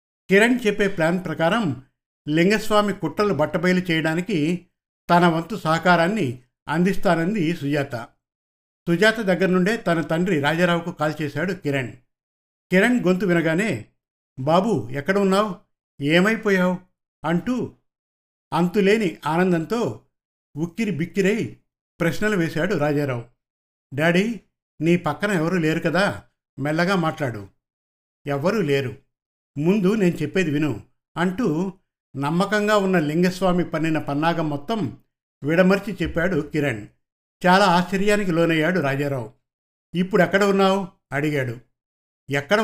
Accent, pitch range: native, 145-190 Hz